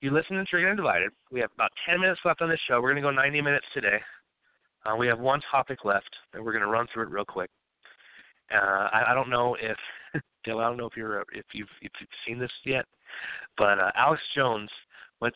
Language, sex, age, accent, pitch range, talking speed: English, male, 30-49, American, 105-130 Hz, 240 wpm